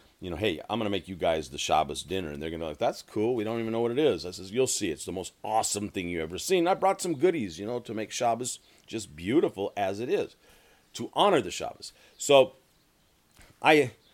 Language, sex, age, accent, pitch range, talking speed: English, male, 40-59, American, 80-115 Hz, 250 wpm